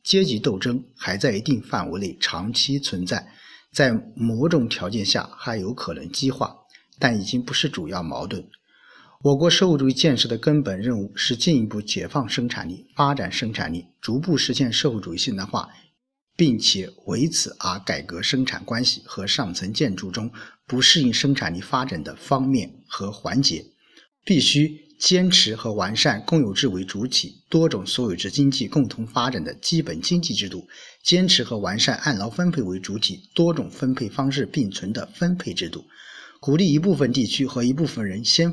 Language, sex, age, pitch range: Chinese, male, 50-69, 110-155 Hz